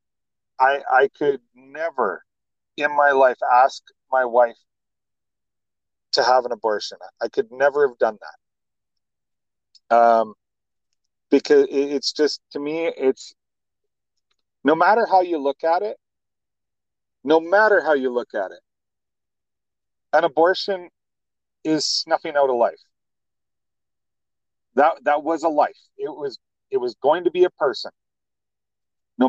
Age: 40-59